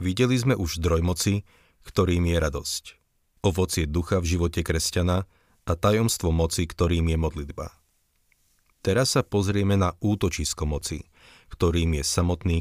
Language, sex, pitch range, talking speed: Slovak, male, 80-95 Hz, 135 wpm